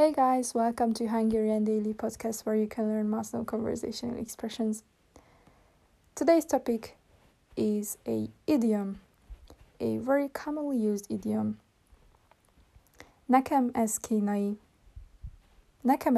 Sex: female